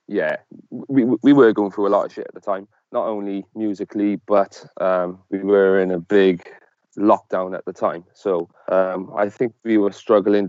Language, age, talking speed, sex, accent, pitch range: English, 20-39, 195 wpm, male, British, 95-105 Hz